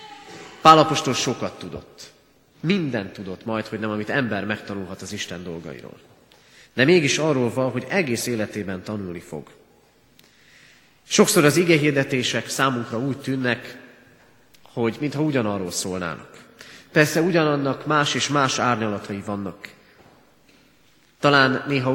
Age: 30-49